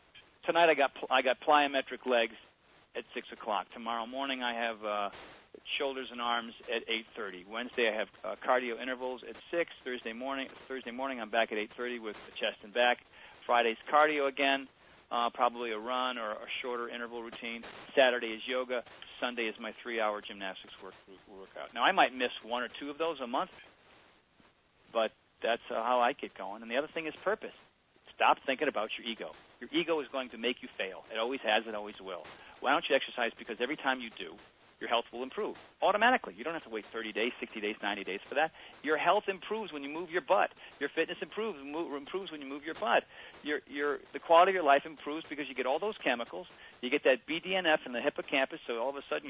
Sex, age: male, 40-59